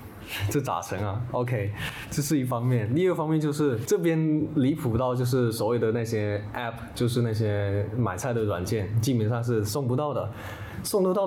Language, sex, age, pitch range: Chinese, male, 20-39, 110-135 Hz